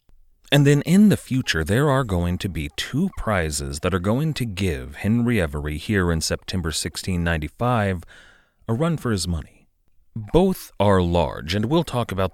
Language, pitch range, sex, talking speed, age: English, 80-115 Hz, male, 170 wpm, 30-49